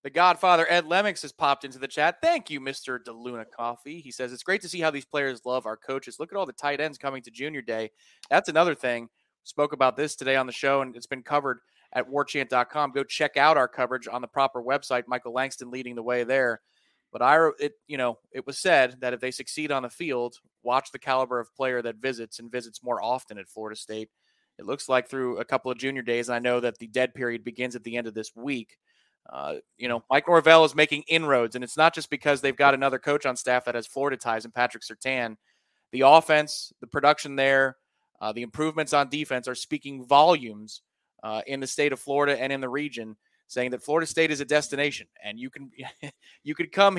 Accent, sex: American, male